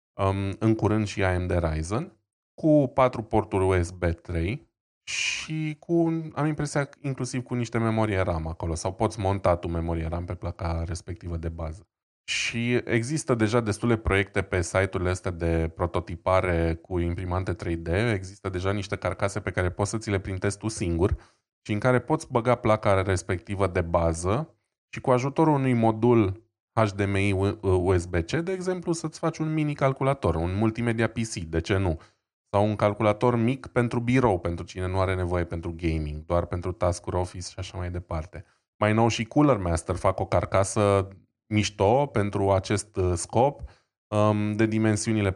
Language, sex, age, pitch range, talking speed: Romanian, male, 20-39, 90-115 Hz, 160 wpm